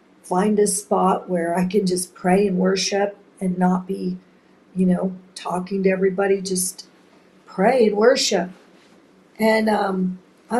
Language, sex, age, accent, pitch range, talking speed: English, female, 50-69, American, 185-210 Hz, 140 wpm